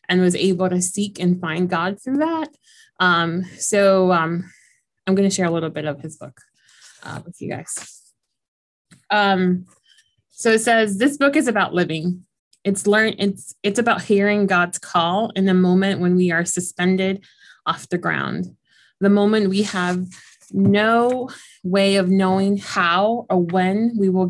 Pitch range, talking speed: 180-205 Hz, 160 wpm